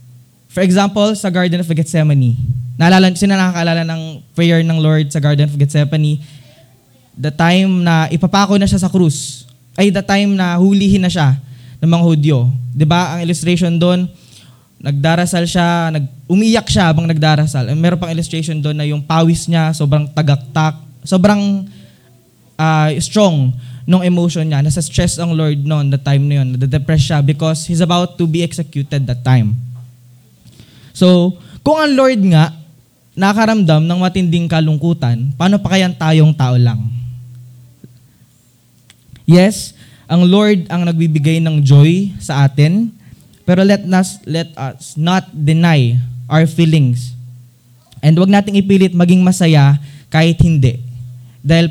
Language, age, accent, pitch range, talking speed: Filipino, 20-39, native, 135-175 Hz, 145 wpm